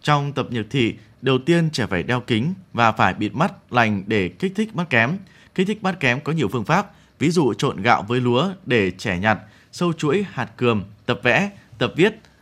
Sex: male